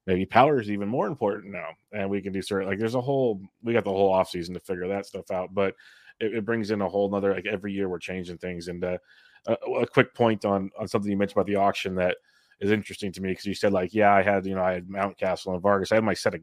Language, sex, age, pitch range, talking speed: English, male, 30-49, 95-110 Hz, 290 wpm